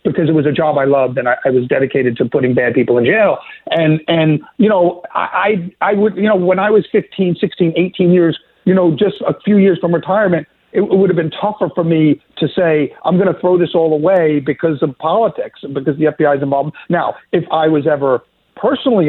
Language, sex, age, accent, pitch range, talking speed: English, male, 50-69, American, 140-175 Hz, 235 wpm